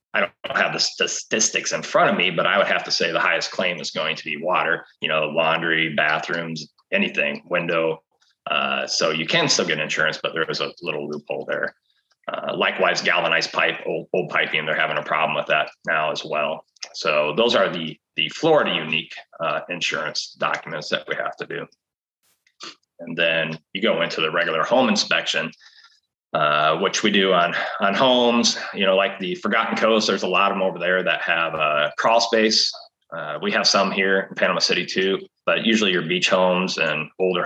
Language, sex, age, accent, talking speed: English, male, 30-49, American, 200 wpm